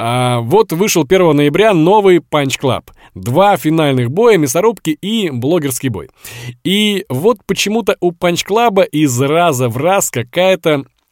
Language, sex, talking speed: Russian, male, 125 wpm